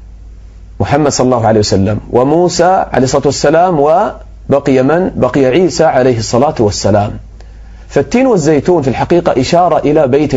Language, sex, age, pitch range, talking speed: English, male, 40-59, 100-160 Hz, 135 wpm